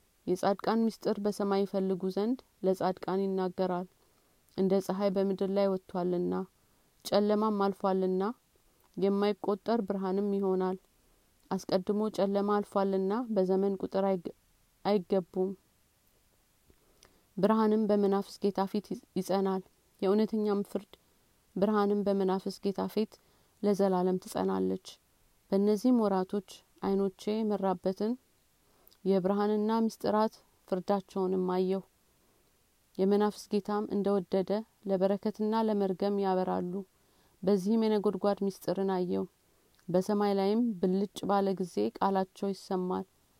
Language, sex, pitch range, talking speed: Amharic, female, 190-205 Hz, 85 wpm